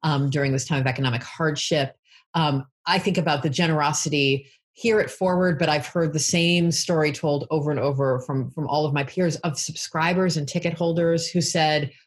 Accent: American